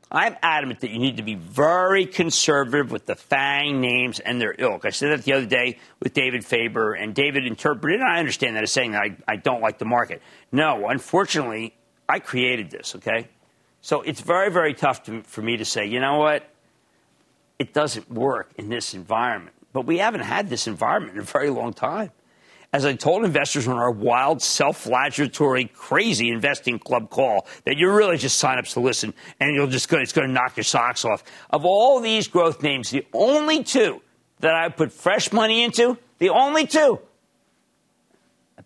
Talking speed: 195 wpm